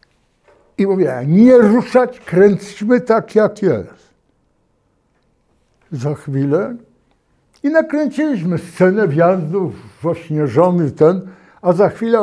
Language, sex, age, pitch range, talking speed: Polish, male, 60-79, 145-205 Hz, 100 wpm